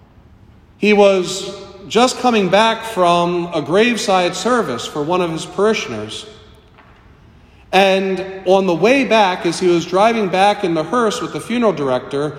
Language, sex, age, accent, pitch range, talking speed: English, male, 40-59, American, 145-195 Hz, 150 wpm